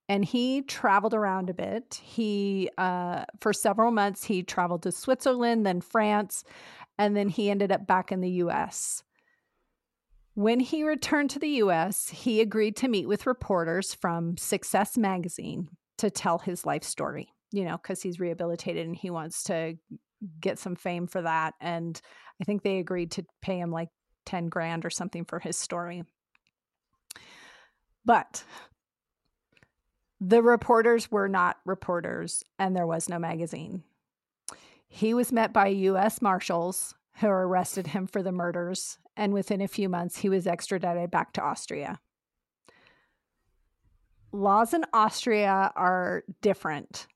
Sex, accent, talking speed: female, American, 145 wpm